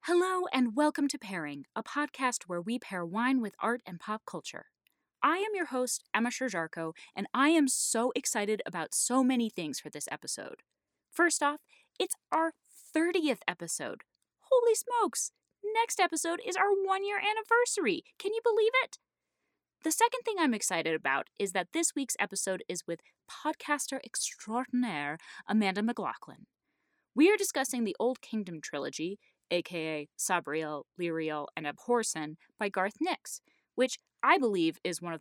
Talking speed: 155 wpm